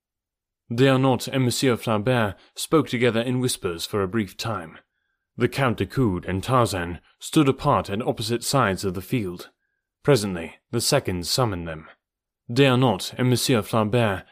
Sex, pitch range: male, 95-130 Hz